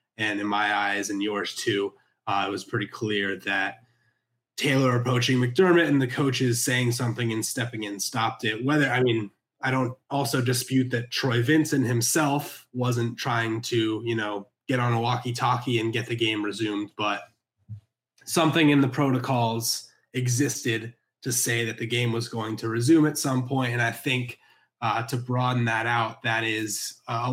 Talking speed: 180 wpm